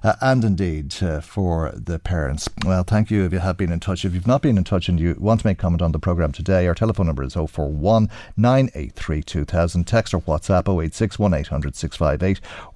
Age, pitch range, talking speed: 50-69, 90-115 Hz, 200 wpm